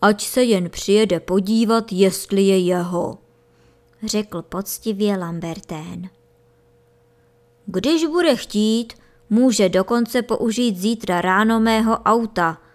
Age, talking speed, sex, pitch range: 20-39, 100 wpm, male, 175-225 Hz